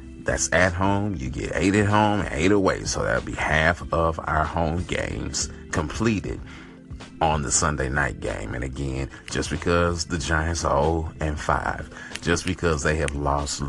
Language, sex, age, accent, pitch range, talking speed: English, male, 40-59, American, 70-90 Hz, 170 wpm